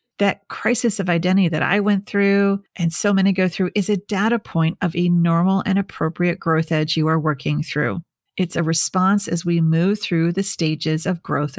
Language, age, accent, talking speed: English, 40-59, American, 200 wpm